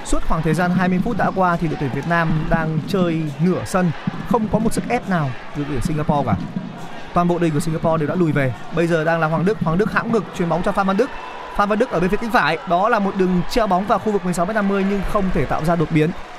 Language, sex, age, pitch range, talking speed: Vietnamese, male, 20-39, 155-200 Hz, 295 wpm